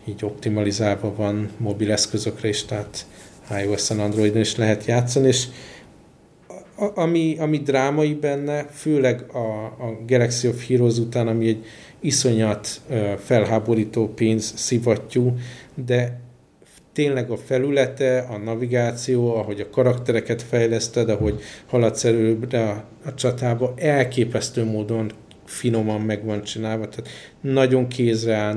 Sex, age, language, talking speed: male, 50-69, Hungarian, 115 wpm